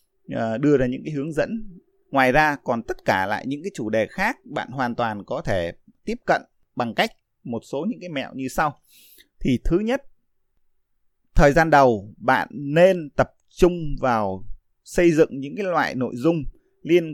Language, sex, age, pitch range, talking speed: Vietnamese, male, 20-39, 125-190 Hz, 180 wpm